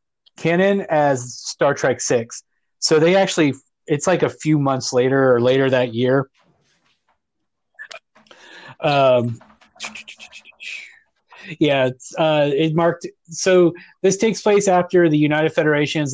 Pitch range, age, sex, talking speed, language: 130-155 Hz, 30-49, male, 120 wpm, English